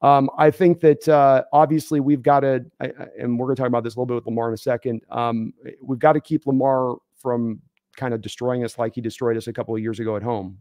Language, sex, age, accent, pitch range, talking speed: English, male, 40-59, American, 120-140 Hz, 270 wpm